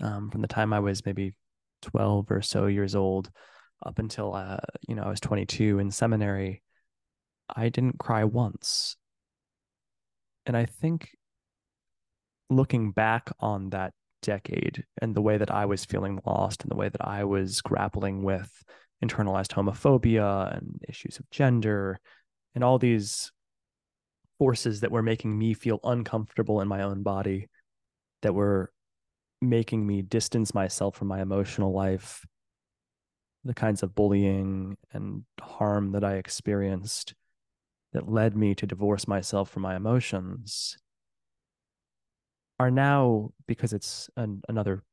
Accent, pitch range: American, 95-115 Hz